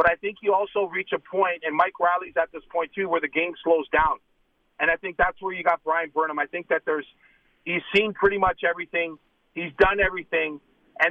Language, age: English, 40-59